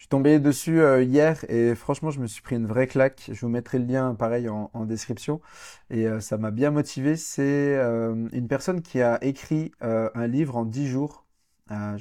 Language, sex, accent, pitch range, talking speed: French, male, French, 110-135 Hz, 220 wpm